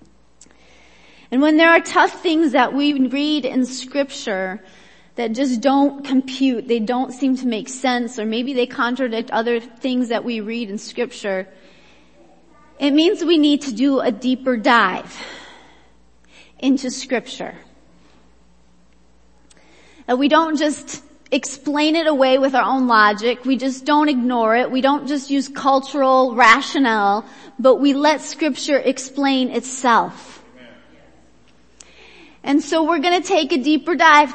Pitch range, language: 240-290 Hz, English